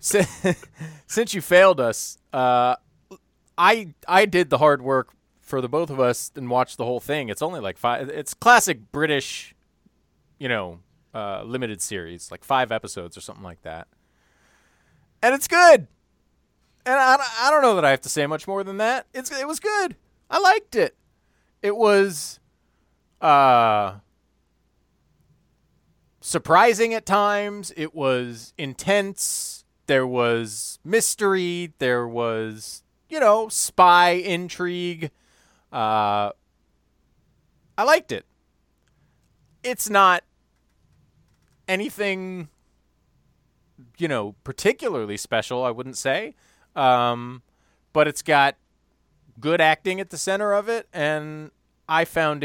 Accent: American